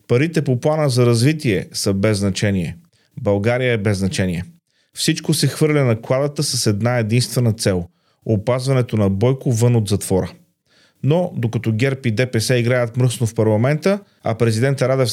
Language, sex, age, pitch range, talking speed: Bulgarian, male, 30-49, 115-140 Hz, 160 wpm